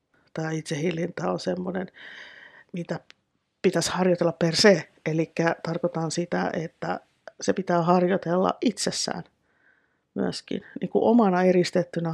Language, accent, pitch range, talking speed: Finnish, native, 165-190 Hz, 110 wpm